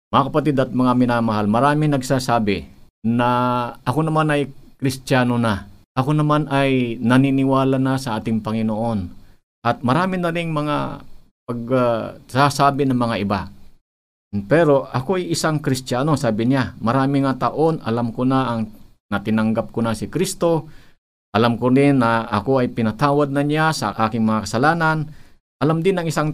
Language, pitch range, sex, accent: Filipino, 115-145 Hz, male, native